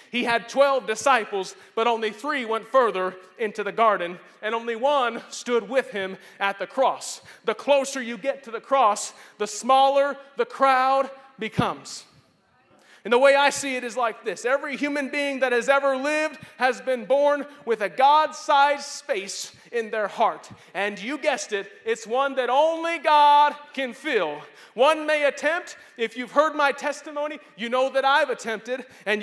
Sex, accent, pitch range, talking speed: male, American, 220-290 Hz, 170 wpm